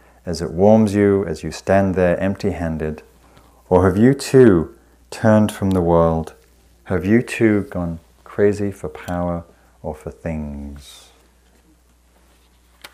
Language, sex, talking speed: English, male, 125 wpm